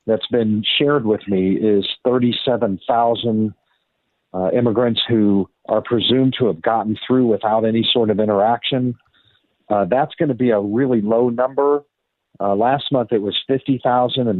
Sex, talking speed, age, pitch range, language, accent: male, 150 wpm, 50-69, 100-120 Hz, English, American